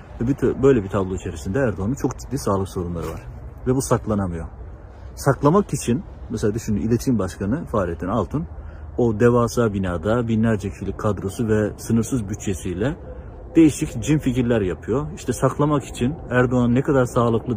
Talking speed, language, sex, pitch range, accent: 145 wpm, Turkish, male, 95-125 Hz, native